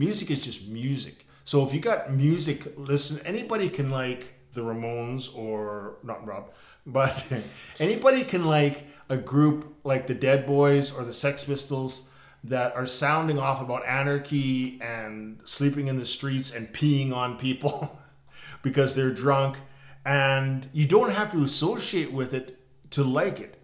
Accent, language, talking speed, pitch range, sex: American, English, 155 wpm, 125-145 Hz, male